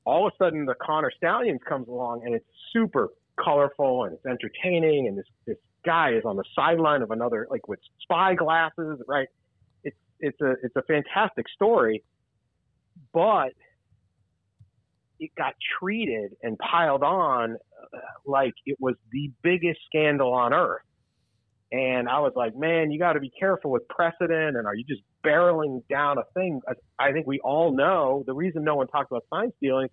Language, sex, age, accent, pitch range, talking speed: English, male, 40-59, American, 125-165 Hz, 175 wpm